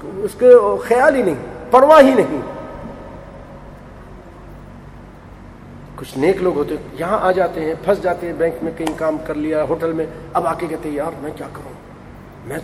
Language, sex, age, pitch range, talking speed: English, male, 40-59, 160-195 Hz, 175 wpm